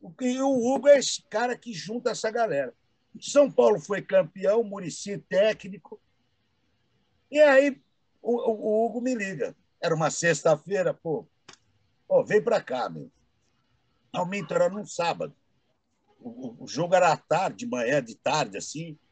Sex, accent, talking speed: male, Brazilian, 140 wpm